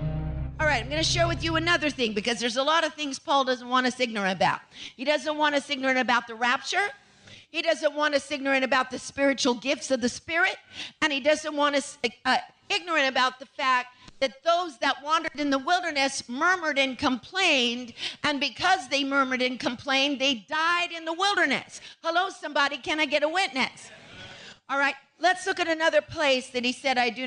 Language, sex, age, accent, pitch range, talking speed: English, female, 50-69, American, 255-330 Hz, 200 wpm